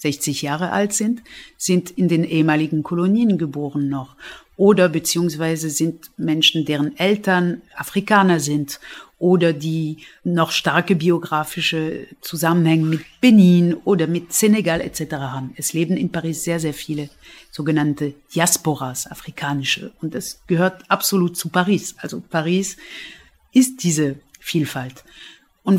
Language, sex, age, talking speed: German, female, 50-69, 125 wpm